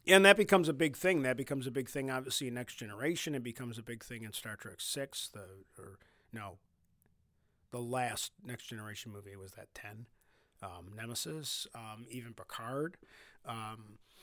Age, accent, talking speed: 40-59, American, 175 wpm